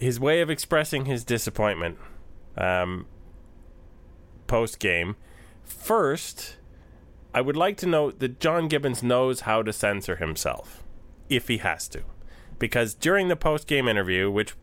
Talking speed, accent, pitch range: 130 wpm, American, 90-135 Hz